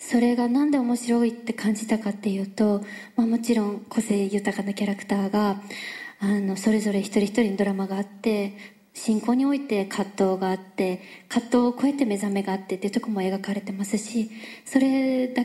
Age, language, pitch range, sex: 20-39, Japanese, 210-260 Hz, female